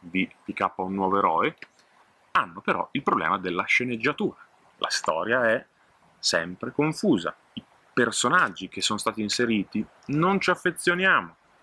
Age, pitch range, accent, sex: 30-49, 95-120 Hz, native, male